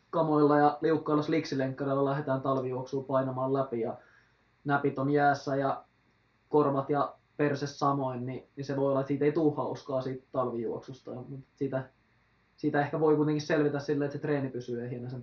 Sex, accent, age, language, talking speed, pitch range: male, native, 20-39, Finnish, 160 wpm, 125-150 Hz